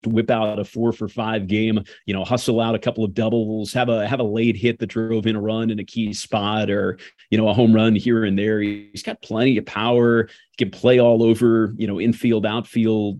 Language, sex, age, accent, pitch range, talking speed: English, male, 30-49, American, 100-115 Hz, 235 wpm